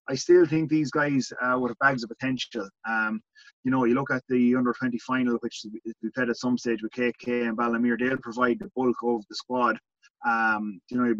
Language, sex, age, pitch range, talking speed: English, male, 30-49, 120-135 Hz, 220 wpm